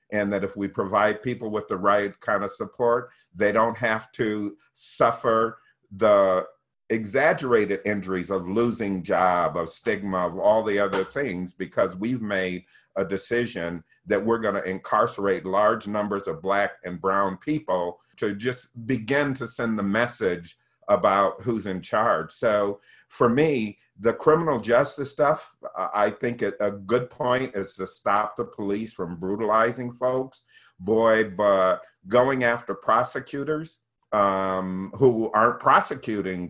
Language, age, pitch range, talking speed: English, 50-69, 95-115 Hz, 145 wpm